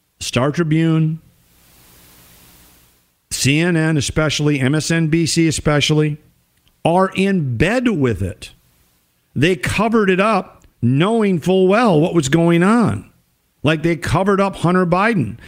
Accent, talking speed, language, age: American, 110 wpm, English, 50-69